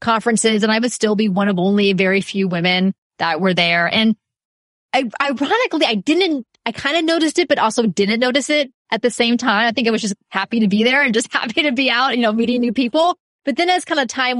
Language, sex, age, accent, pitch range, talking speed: English, female, 20-39, American, 205-285 Hz, 250 wpm